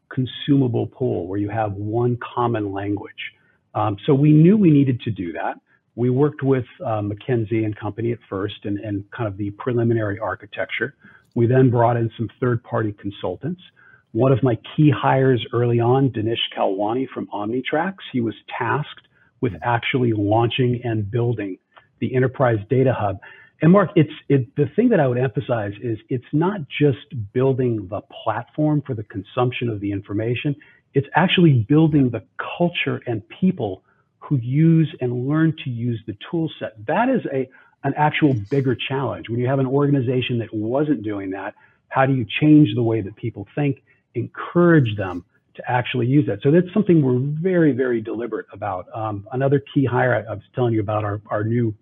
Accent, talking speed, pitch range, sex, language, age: American, 180 wpm, 110-140 Hz, male, English, 50-69